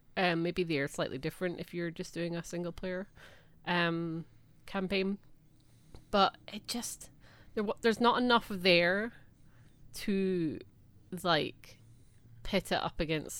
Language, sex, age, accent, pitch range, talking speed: English, female, 30-49, British, 150-200 Hz, 125 wpm